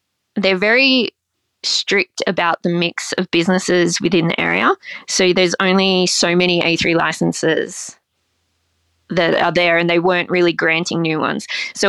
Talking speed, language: 145 wpm, English